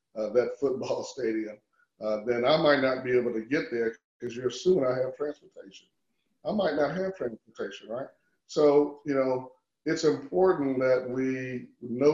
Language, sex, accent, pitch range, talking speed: English, male, American, 120-155 Hz, 170 wpm